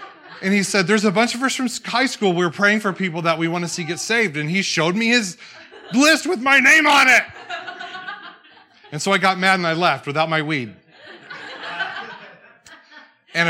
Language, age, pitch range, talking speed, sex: English, 30-49, 125-190 Hz, 200 wpm, male